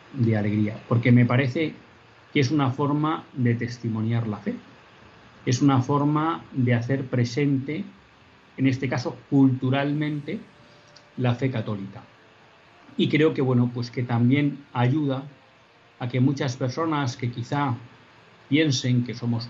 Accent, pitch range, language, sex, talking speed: Spanish, 115-135 Hz, Spanish, male, 130 wpm